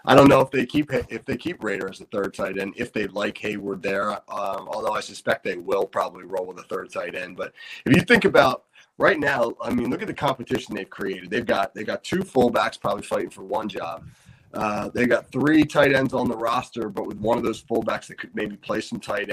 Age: 30-49